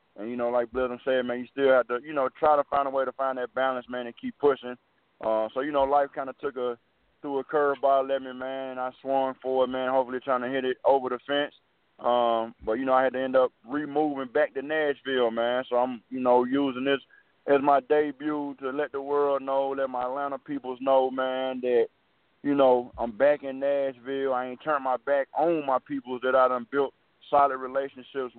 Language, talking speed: English, 230 wpm